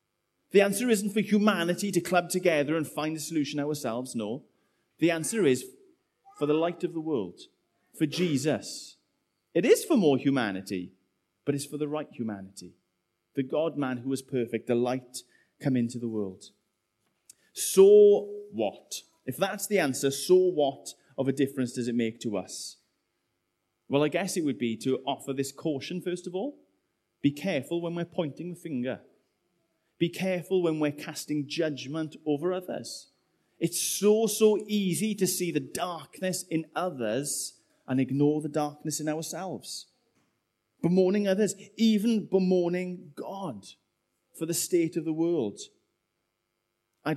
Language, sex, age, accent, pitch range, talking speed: English, male, 30-49, British, 130-180 Hz, 150 wpm